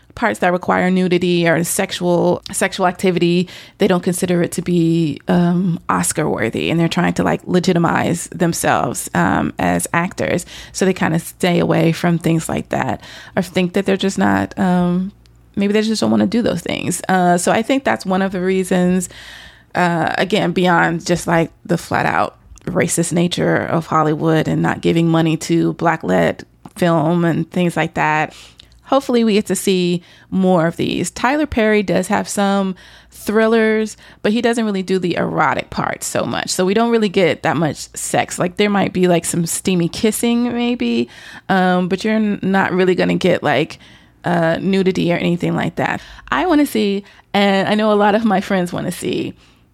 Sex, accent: female, American